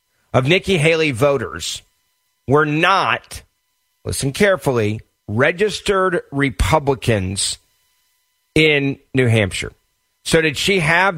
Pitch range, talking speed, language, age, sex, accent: 130-170 Hz, 90 wpm, English, 40-59, male, American